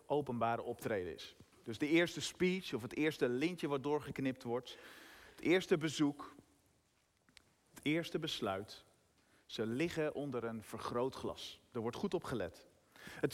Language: Dutch